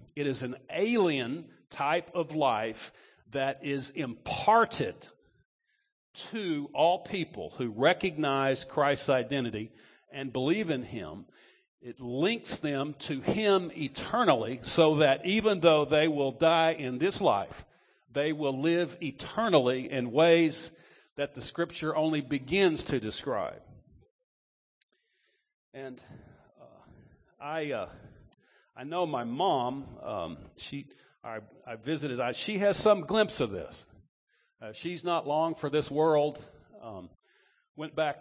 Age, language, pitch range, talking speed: 50-69, English, 135-165 Hz, 125 wpm